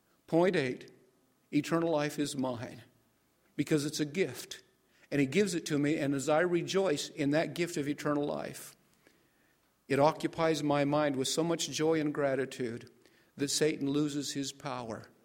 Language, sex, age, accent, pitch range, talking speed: English, male, 50-69, American, 125-150 Hz, 160 wpm